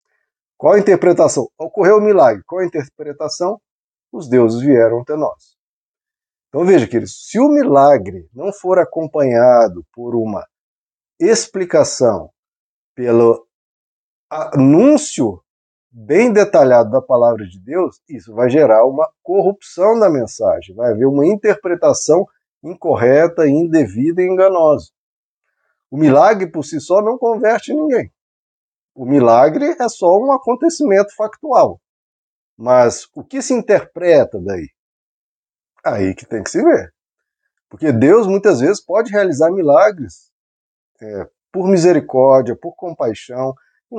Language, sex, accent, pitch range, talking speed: Portuguese, male, Brazilian, 130-205 Hz, 125 wpm